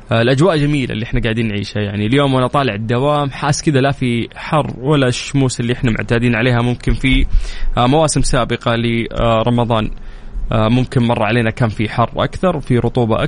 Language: Arabic